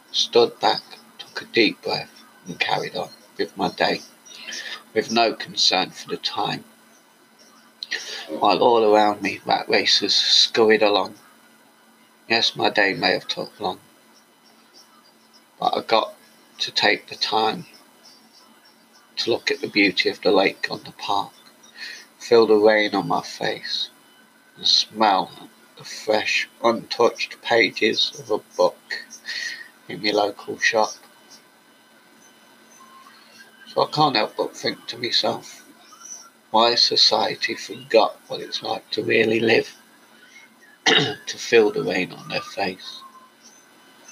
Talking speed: 130 wpm